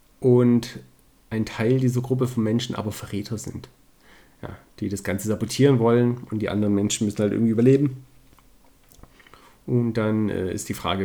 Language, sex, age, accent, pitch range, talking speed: German, male, 40-59, German, 100-130 Hz, 165 wpm